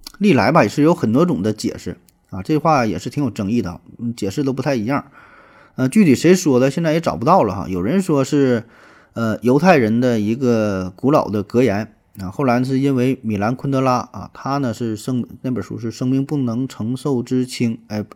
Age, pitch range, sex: 20-39, 105-130 Hz, male